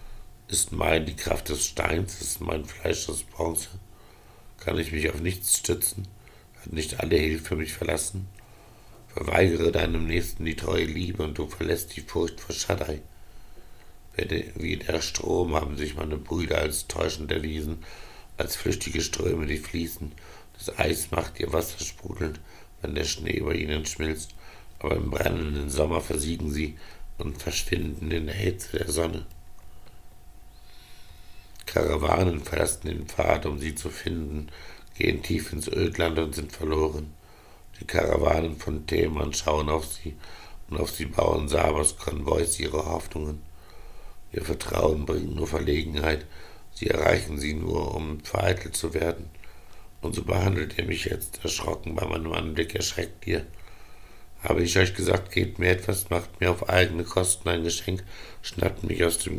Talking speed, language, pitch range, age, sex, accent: 150 wpm, English, 75-90 Hz, 60-79, male, German